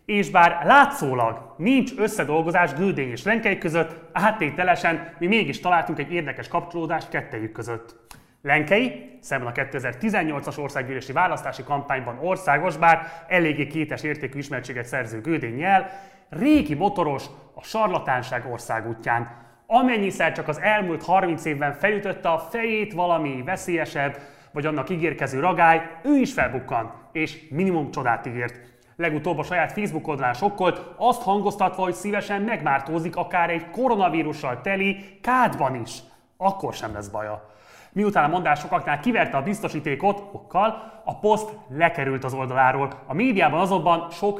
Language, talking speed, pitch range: Hungarian, 130 wpm, 135-190 Hz